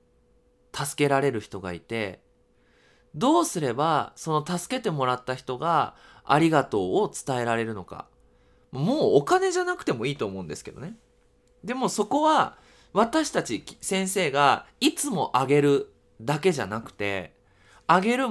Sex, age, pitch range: male, 20-39, 115-190 Hz